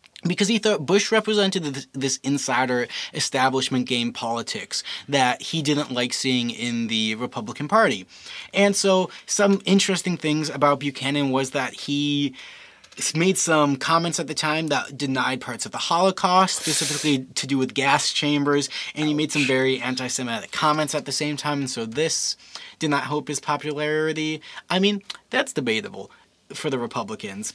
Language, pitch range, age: English, 130-170 Hz, 20-39